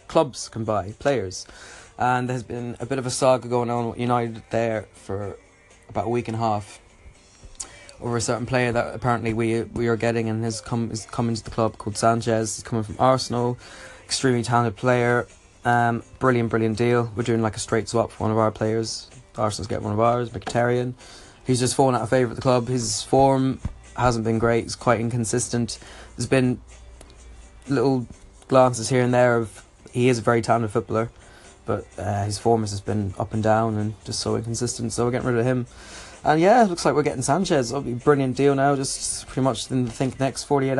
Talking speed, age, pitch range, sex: 210 wpm, 20-39, 110-125 Hz, male